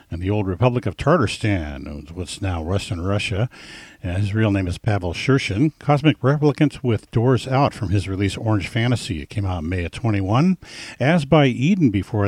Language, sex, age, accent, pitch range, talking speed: English, male, 50-69, American, 100-135 Hz, 185 wpm